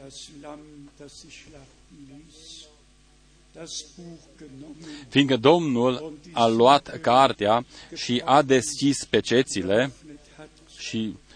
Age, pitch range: 40-59, 115-150 Hz